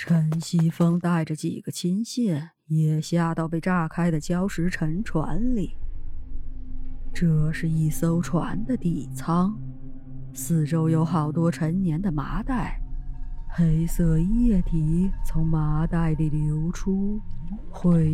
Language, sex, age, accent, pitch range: Chinese, female, 30-49, native, 150-175 Hz